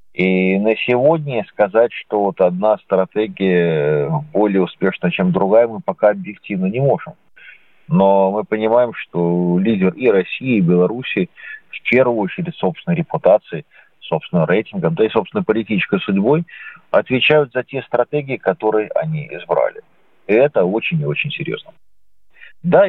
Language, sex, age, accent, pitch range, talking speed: Russian, male, 40-59, native, 100-155 Hz, 135 wpm